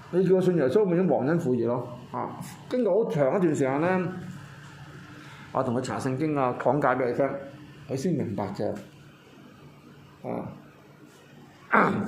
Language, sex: Chinese, male